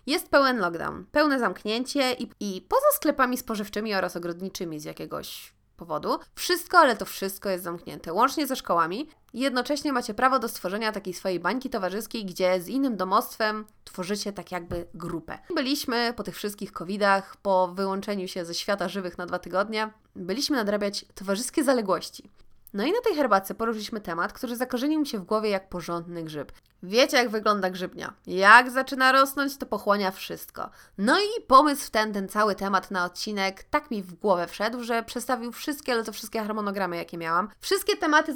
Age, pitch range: 20-39, 190-260 Hz